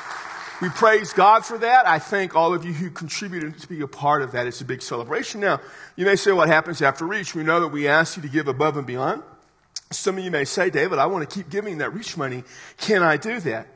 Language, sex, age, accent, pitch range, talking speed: English, male, 40-59, American, 140-180 Hz, 255 wpm